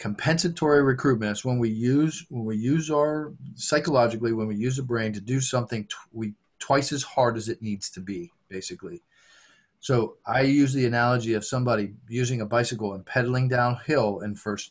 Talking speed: 185 wpm